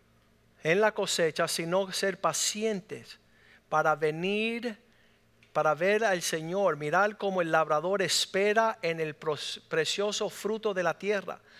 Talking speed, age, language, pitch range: 125 wpm, 50-69, Spanish, 170-220 Hz